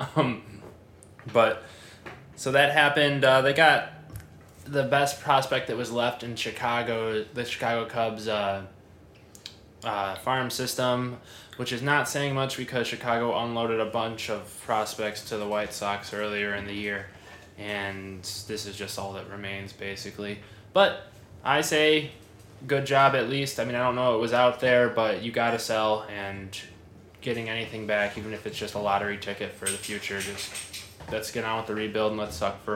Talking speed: 175 wpm